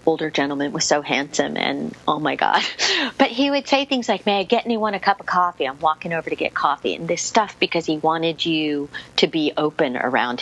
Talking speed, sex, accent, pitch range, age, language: 230 wpm, female, American, 155-190 Hz, 40-59, English